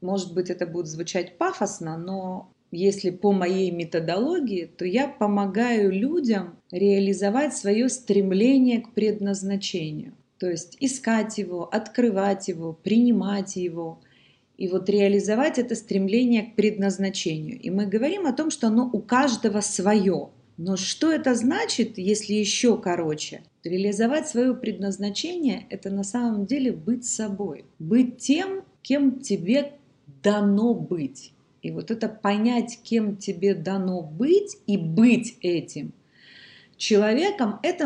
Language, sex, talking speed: Russian, female, 125 wpm